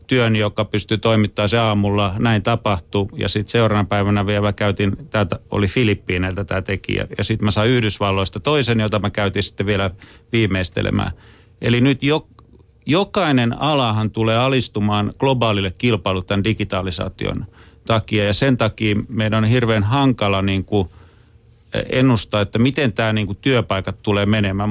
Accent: native